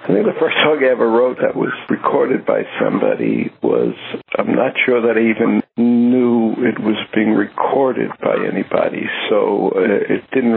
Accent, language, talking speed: American, English, 175 wpm